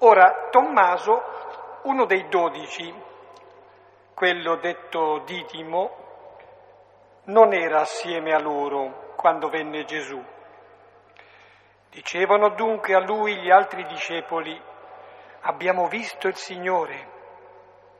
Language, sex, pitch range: Italian, male, 160-205 Hz